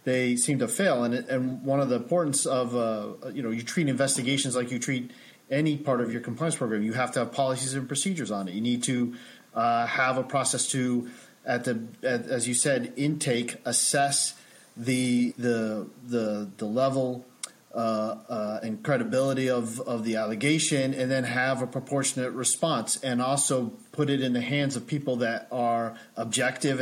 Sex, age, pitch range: male, 40-59, 120-135 Hz